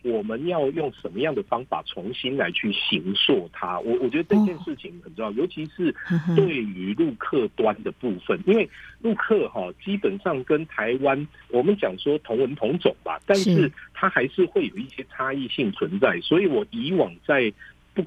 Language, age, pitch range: Chinese, 50-69, 150-215 Hz